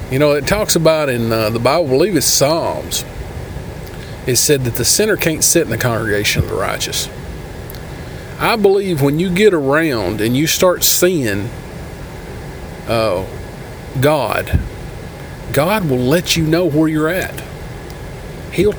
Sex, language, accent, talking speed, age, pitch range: male, English, American, 150 wpm, 40-59, 125-160 Hz